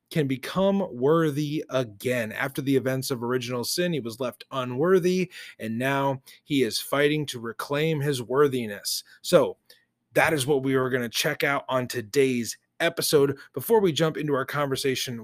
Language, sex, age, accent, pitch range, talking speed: English, male, 30-49, American, 130-165 Hz, 165 wpm